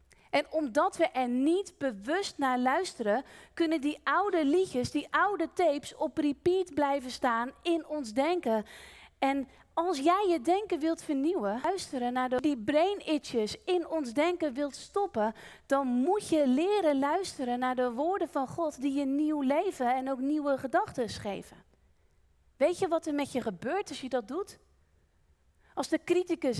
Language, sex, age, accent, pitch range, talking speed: Dutch, female, 30-49, Dutch, 260-345 Hz, 160 wpm